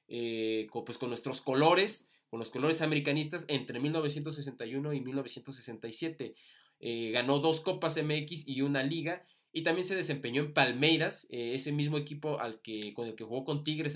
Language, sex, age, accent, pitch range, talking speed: Spanish, male, 20-39, Mexican, 130-155 Hz, 170 wpm